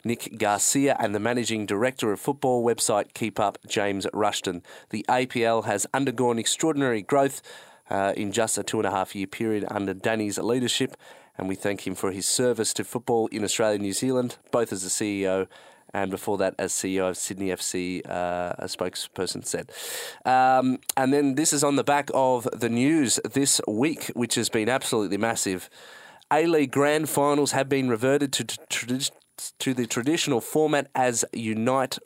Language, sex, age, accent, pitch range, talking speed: English, male, 30-49, Australian, 105-135 Hz, 170 wpm